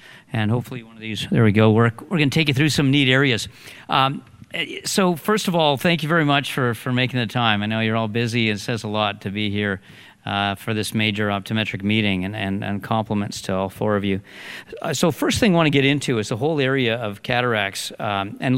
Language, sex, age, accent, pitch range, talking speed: English, male, 50-69, American, 110-130 Hz, 245 wpm